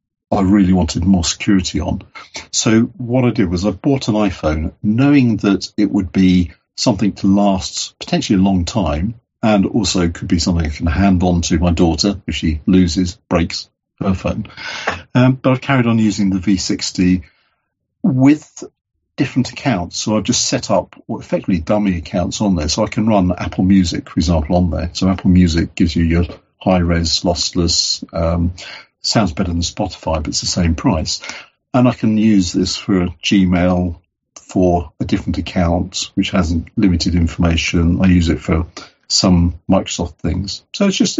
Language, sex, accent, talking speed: English, male, British, 175 wpm